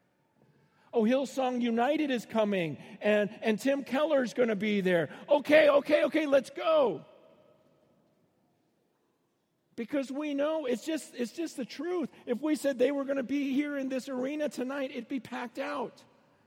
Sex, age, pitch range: male, 50-69, 205-260 Hz